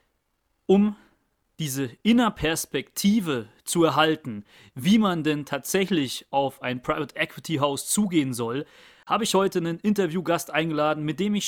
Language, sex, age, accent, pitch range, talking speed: German, male, 30-49, German, 155-190 Hz, 130 wpm